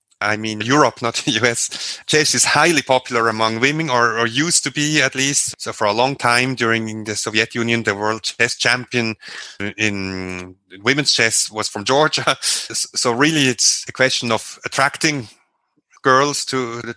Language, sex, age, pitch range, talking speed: English, male, 30-49, 115-145 Hz, 170 wpm